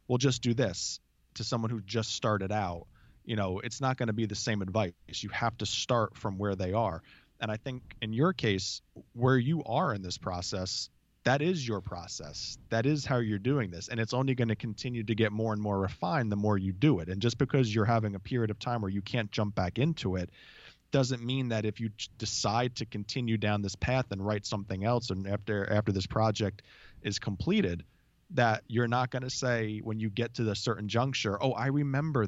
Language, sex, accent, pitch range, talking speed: English, male, American, 105-125 Hz, 225 wpm